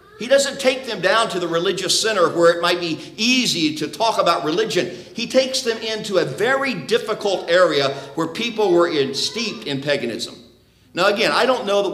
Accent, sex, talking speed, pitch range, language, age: American, male, 195 wpm, 165-230 Hz, English, 50-69